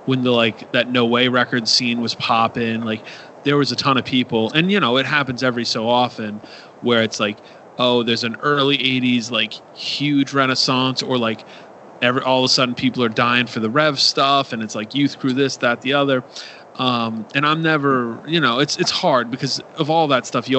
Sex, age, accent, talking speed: male, 30-49, American, 215 wpm